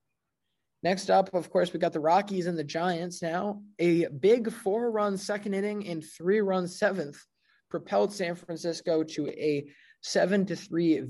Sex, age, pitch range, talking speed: male, 20-39, 150-180 Hz, 140 wpm